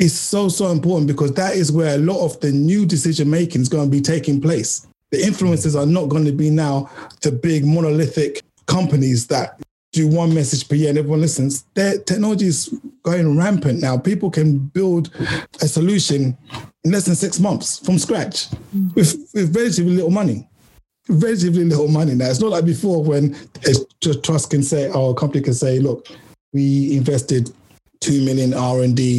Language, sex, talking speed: English, male, 180 wpm